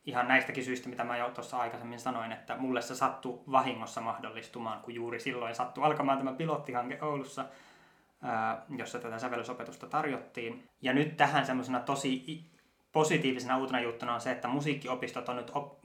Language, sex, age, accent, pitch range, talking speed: Finnish, male, 20-39, native, 120-145 Hz, 155 wpm